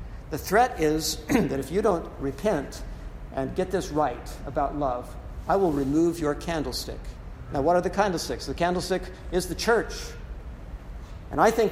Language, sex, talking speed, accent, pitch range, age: English, male, 165 wpm, American, 135-170 Hz, 60-79